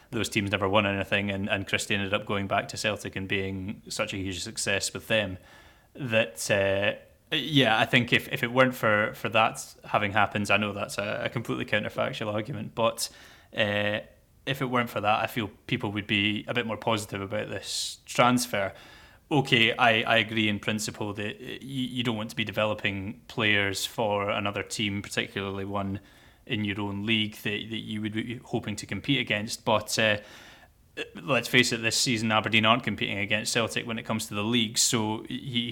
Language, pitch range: English, 105-115 Hz